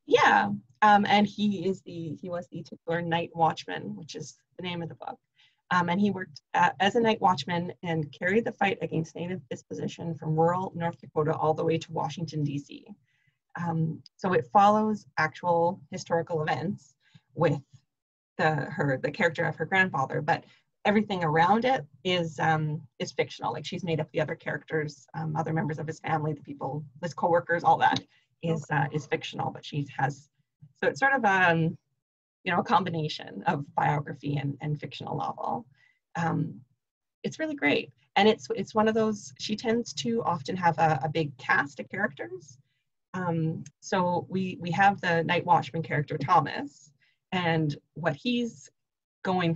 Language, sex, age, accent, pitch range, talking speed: English, female, 30-49, American, 150-180 Hz, 175 wpm